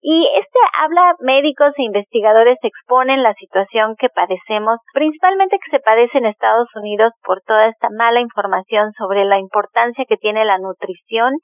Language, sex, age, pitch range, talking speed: Spanish, female, 30-49, 210-255 Hz, 155 wpm